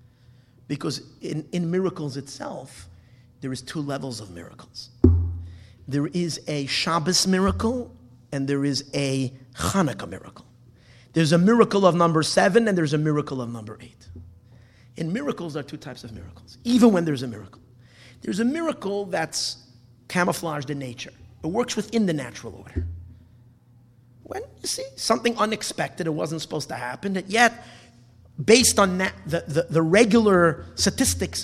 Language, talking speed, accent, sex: English, 150 wpm, American, male